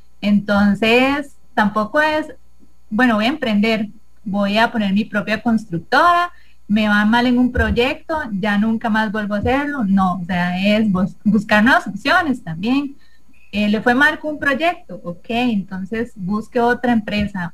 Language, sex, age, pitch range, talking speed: English, female, 30-49, 205-260 Hz, 155 wpm